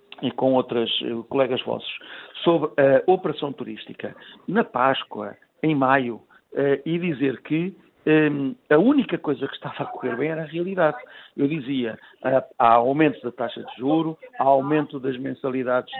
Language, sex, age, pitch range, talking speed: Portuguese, male, 60-79, 140-180 Hz, 165 wpm